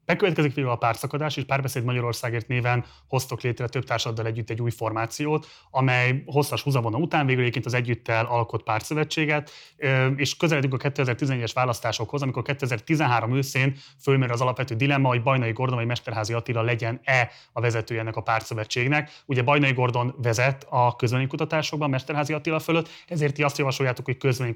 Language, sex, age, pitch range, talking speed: Hungarian, male, 30-49, 120-140 Hz, 160 wpm